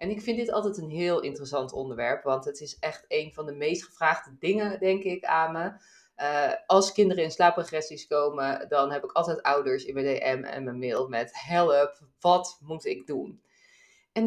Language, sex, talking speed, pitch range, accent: Dutch, female, 200 wpm, 150-220 Hz, Dutch